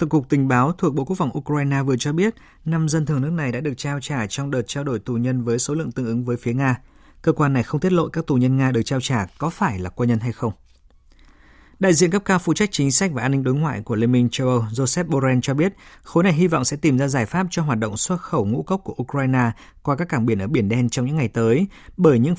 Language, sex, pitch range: Vietnamese, male, 120-150 Hz